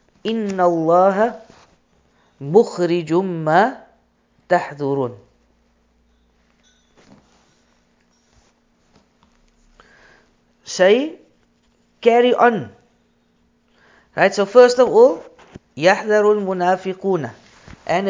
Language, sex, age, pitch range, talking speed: English, female, 50-69, 160-215 Hz, 50 wpm